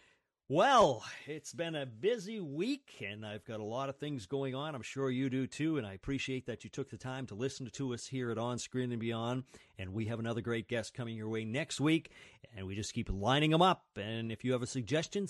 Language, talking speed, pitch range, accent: English, 245 wpm, 110-145 Hz, American